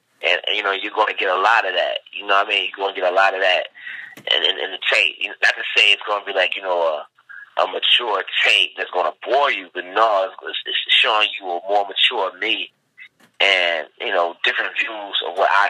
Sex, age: male, 30-49